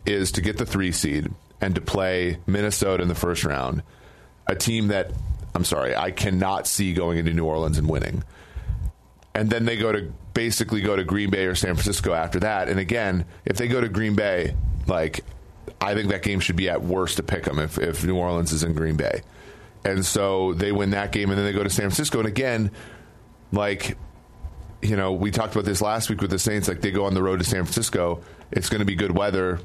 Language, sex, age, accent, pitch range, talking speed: English, male, 30-49, American, 90-100 Hz, 230 wpm